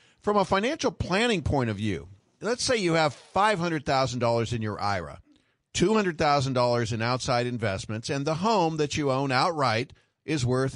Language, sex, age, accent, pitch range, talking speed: English, male, 40-59, American, 115-155 Hz, 155 wpm